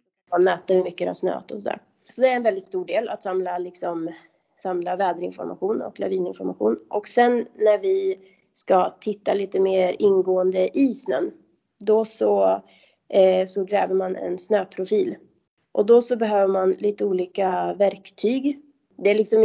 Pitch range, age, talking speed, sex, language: 185-215 Hz, 30-49, 155 wpm, female, English